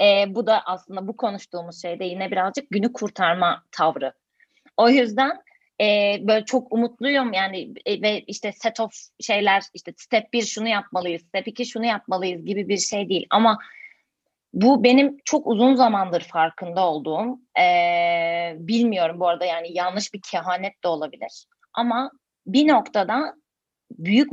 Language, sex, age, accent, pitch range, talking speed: Turkish, female, 30-49, native, 185-235 Hz, 150 wpm